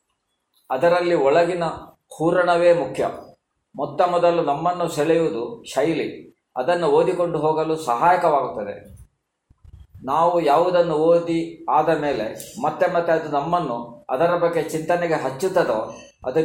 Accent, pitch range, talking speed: native, 140-170 Hz, 100 wpm